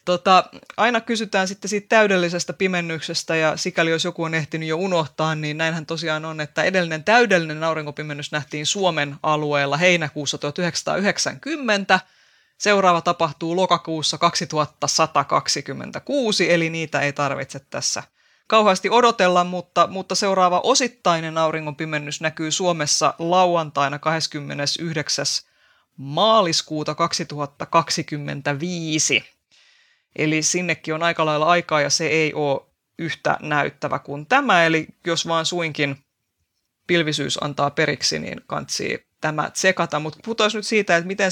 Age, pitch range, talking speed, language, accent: 20-39, 150-180 Hz, 115 wpm, Finnish, native